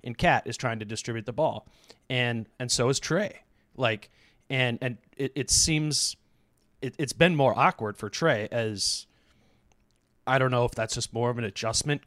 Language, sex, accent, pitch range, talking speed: English, male, American, 110-130 Hz, 185 wpm